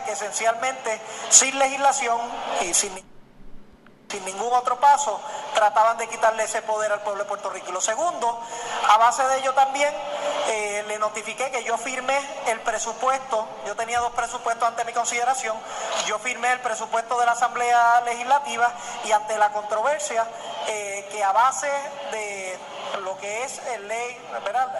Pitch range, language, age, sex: 215-260 Hz, Spanish, 30-49, male